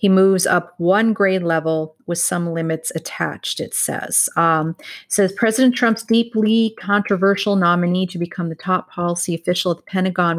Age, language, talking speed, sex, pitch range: 30-49, English, 170 wpm, female, 170-200 Hz